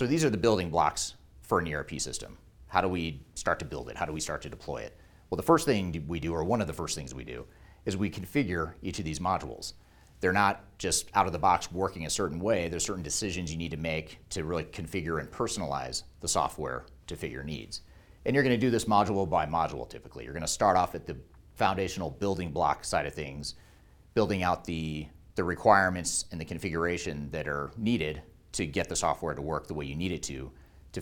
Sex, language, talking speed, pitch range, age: male, English, 235 wpm, 75-95 Hz, 30-49